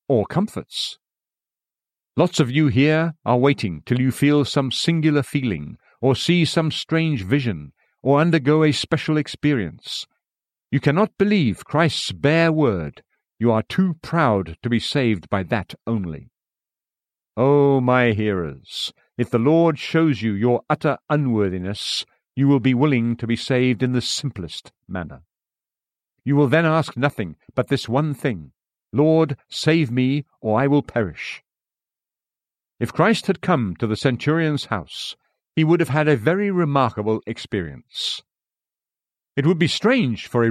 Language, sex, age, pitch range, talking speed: English, male, 50-69, 115-155 Hz, 150 wpm